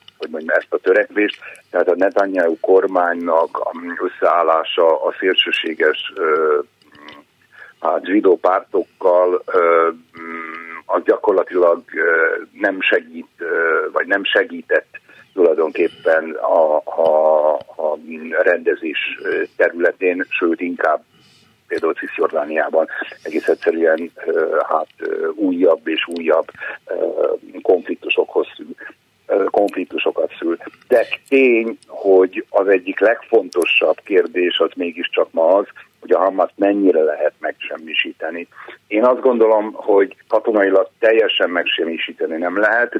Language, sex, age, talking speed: Hungarian, male, 50-69, 95 wpm